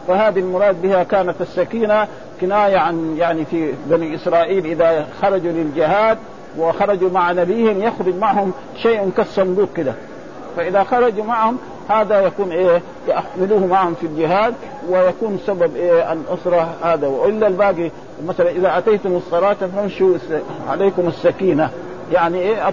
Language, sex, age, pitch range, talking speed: Arabic, male, 50-69, 165-200 Hz, 125 wpm